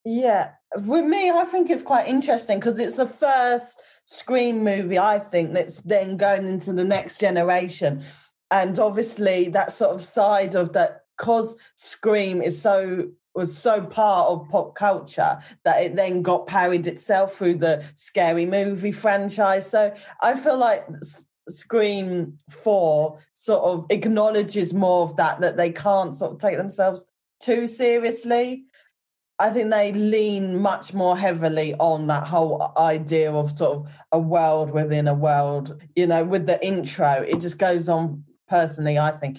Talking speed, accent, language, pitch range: 160 wpm, British, English, 155-205 Hz